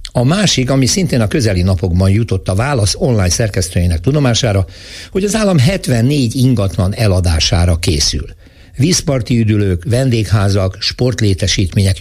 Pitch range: 95-125 Hz